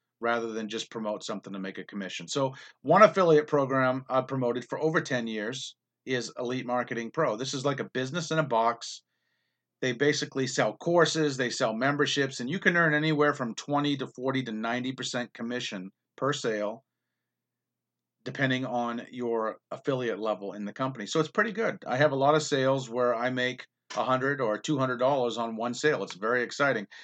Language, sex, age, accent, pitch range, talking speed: English, male, 40-59, American, 115-145 Hz, 180 wpm